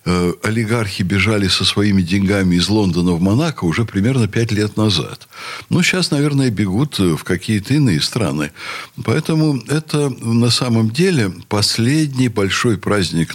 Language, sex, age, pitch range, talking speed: Russian, male, 60-79, 95-145 Hz, 135 wpm